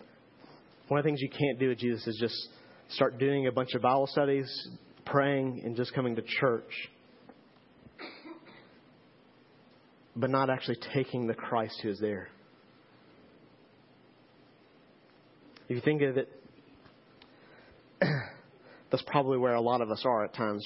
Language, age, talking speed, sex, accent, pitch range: English, 40-59, 140 wpm, male, American, 125-165 Hz